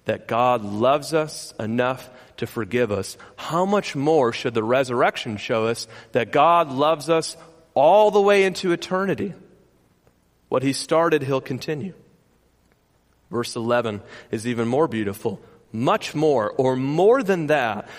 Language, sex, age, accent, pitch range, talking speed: English, male, 40-59, American, 115-155 Hz, 140 wpm